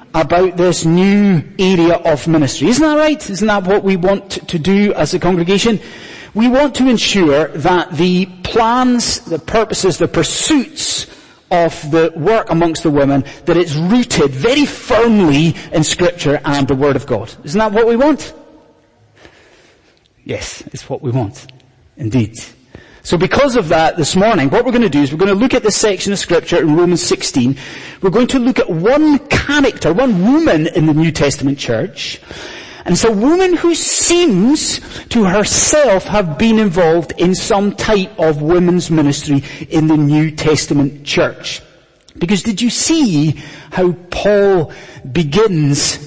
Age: 30-49